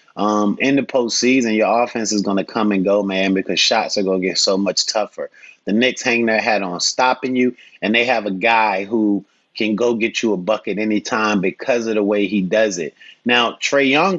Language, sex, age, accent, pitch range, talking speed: English, male, 30-49, American, 100-125 Hz, 215 wpm